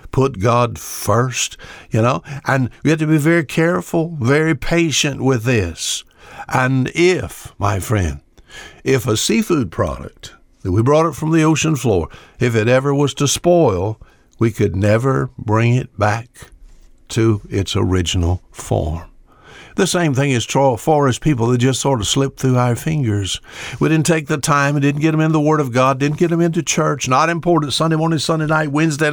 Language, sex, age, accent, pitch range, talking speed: English, male, 60-79, American, 110-155 Hz, 180 wpm